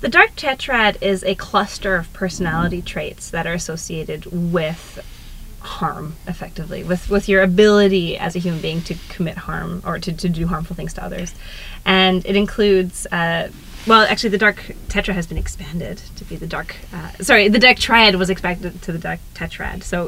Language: English